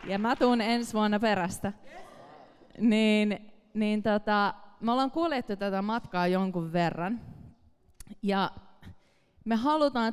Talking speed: 115 wpm